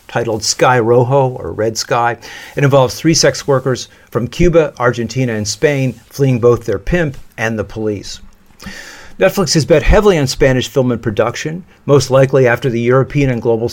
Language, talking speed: French, 170 wpm